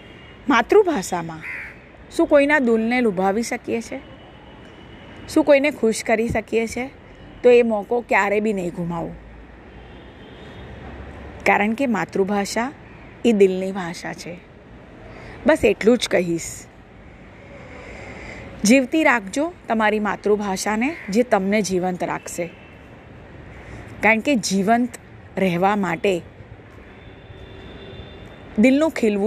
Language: Hindi